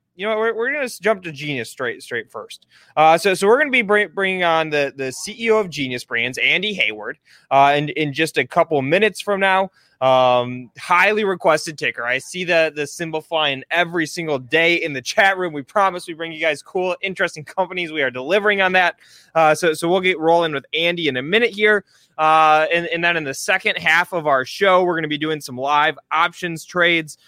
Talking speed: 220 wpm